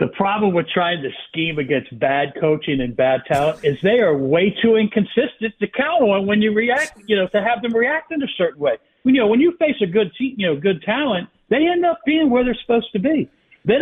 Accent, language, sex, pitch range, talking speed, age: American, English, male, 140-200 Hz, 250 wpm, 60-79